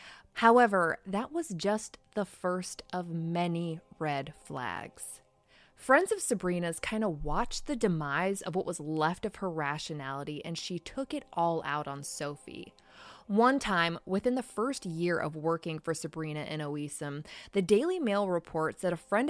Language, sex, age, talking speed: English, female, 20-39, 160 wpm